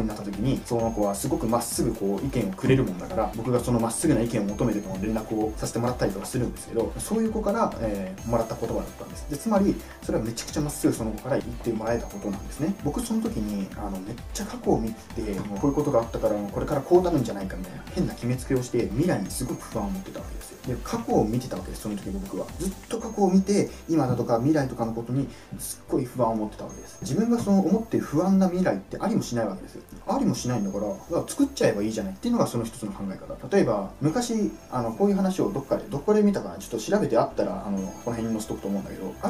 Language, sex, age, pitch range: Japanese, male, 20-39, 110-170 Hz